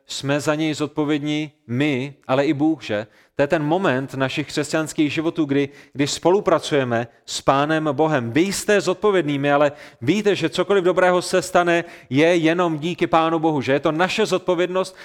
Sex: male